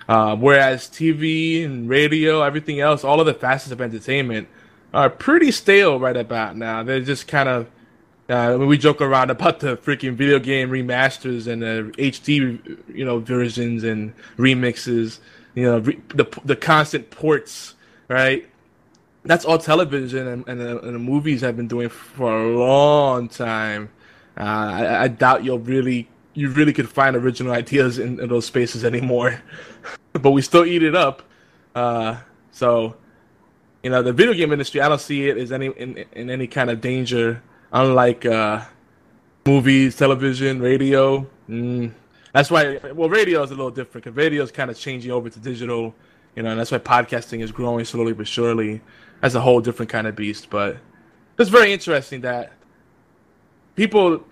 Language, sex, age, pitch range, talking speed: English, male, 20-39, 120-145 Hz, 170 wpm